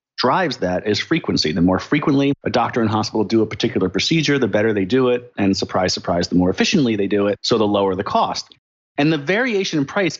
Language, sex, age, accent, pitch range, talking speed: English, male, 30-49, American, 105-140 Hz, 230 wpm